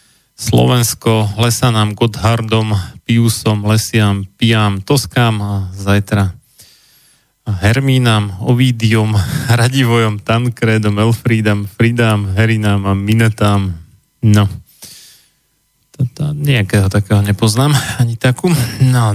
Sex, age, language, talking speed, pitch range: male, 30-49, Slovak, 80 wpm, 105-125 Hz